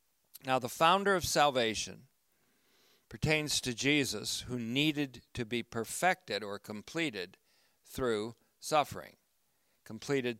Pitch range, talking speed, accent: 110-135 Hz, 105 wpm, American